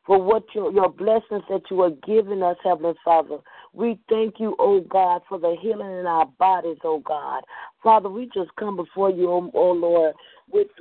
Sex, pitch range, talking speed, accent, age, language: female, 180-230 Hz, 205 wpm, American, 40-59, English